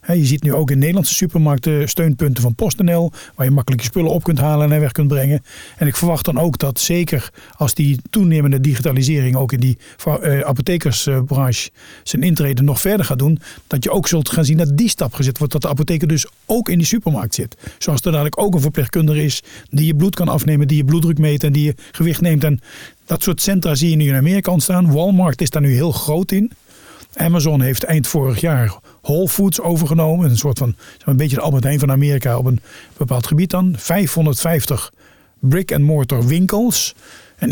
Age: 40-59